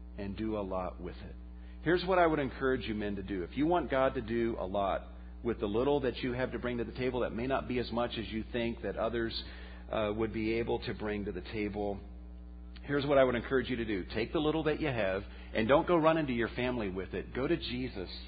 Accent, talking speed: American, 265 wpm